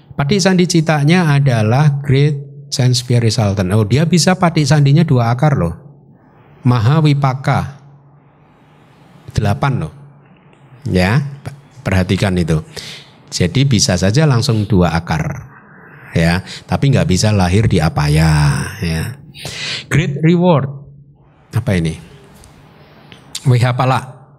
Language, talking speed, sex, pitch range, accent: Indonesian, 100 wpm, male, 120-155 Hz, native